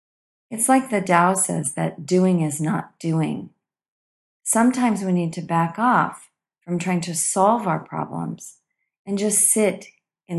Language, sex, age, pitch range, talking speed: English, female, 40-59, 160-210 Hz, 150 wpm